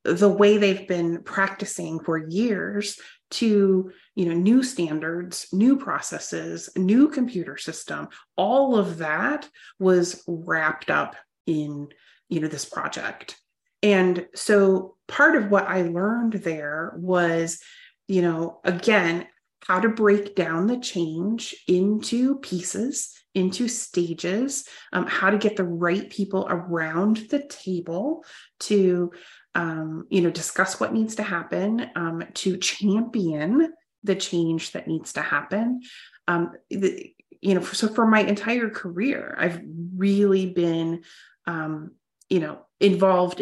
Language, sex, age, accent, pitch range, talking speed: English, female, 30-49, American, 170-215 Hz, 130 wpm